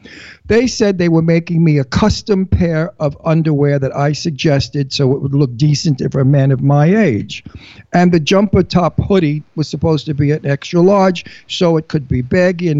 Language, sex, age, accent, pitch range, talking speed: English, male, 50-69, American, 140-175 Hz, 200 wpm